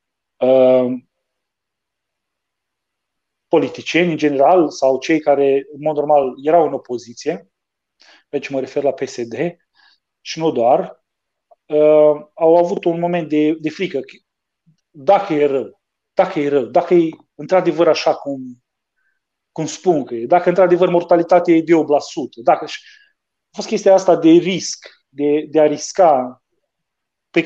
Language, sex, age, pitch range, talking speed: Romanian, male, 40-59, 140-180 Hz, 125 wpm